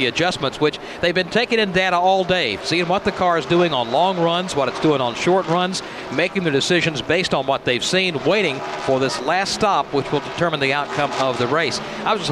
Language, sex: English, male